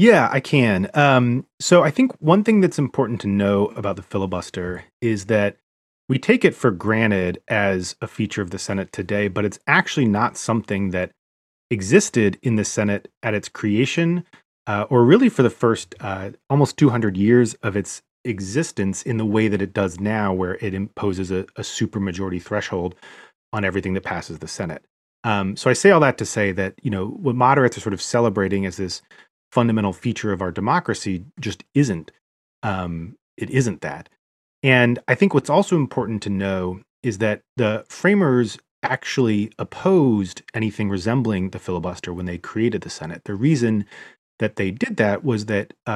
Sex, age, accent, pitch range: male, 30-49, American, 95-120 Hz